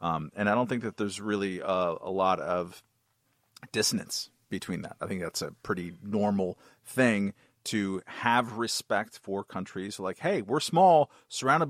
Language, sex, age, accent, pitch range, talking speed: English, male, 40-59, American, 100-125 Hz, 165 wpm